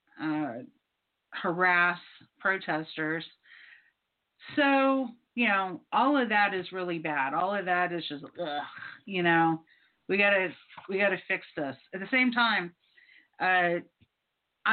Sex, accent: female, American